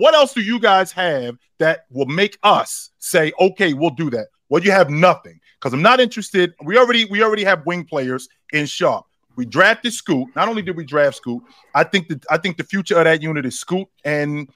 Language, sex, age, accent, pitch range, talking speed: English, male, 30-49, American, 150-215 Hz, 225 wpm